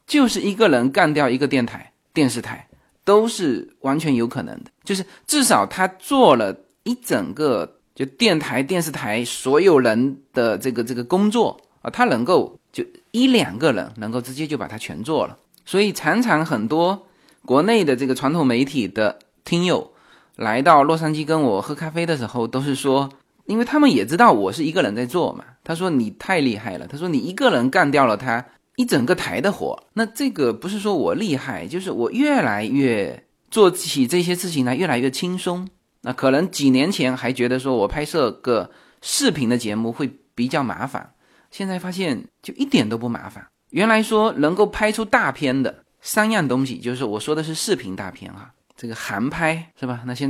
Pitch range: 130-190 Hz